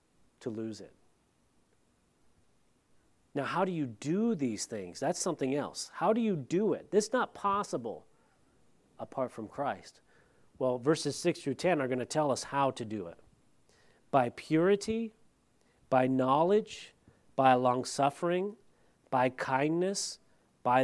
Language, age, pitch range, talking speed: English, 40-59, 130-170 Hz, 140 wpm